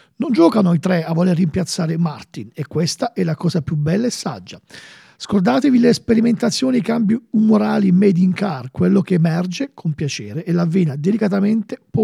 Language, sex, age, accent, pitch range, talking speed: Italian, male, 50-69, native, 170-215 Hz, 180 wpm